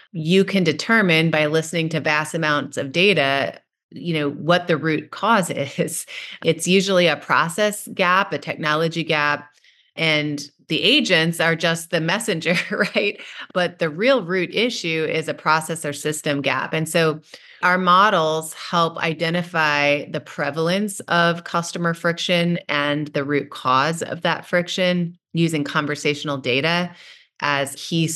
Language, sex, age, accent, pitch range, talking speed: English, female, 30-49, American, 155-180 Hz, 145 wpm